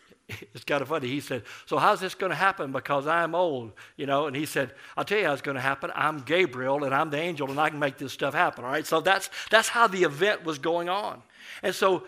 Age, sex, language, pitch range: 50-69, male, English, 140-185 Hz